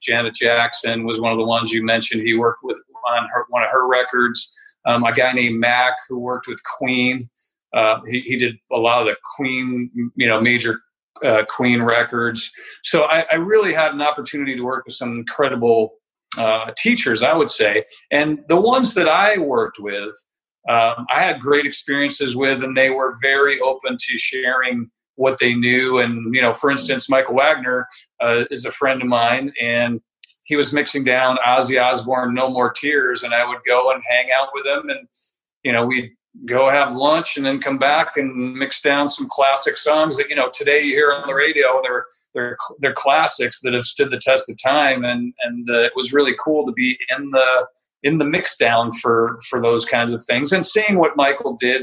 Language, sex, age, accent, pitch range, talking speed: English, male, 50-69, American, 120-140 Hz, 205 wpm